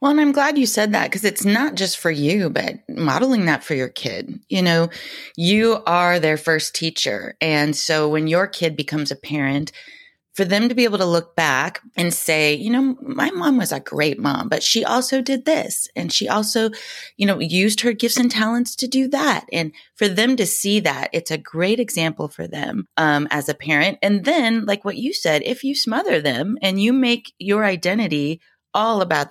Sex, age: female, 30-49